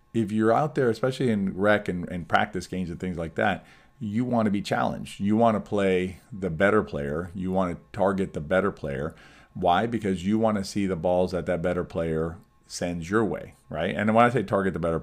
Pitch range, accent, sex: 85-105 Hz, American, male